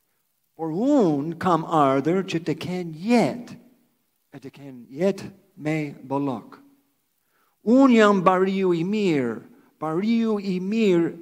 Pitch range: 155-205 Hz